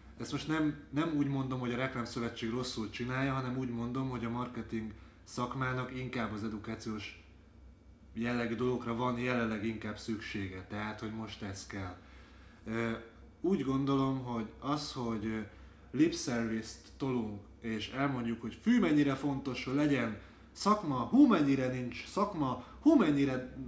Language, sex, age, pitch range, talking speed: Hungarian, male, 30-49, 105-130 Hz, 140 wpm